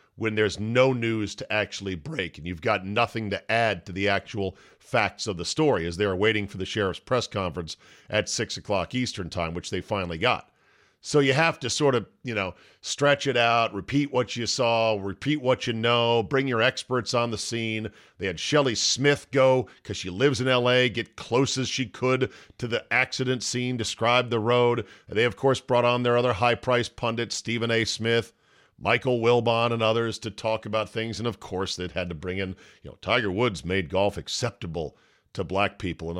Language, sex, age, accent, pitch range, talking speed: English, male, 40-59, American, 100-130 Hz, 205 wpm